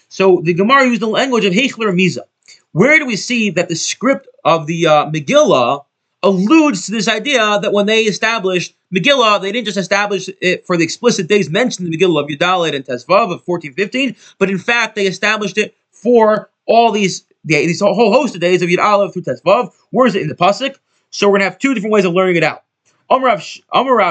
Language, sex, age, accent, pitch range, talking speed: English, male, 30-49, American, 170-220 Hz, 215 wpm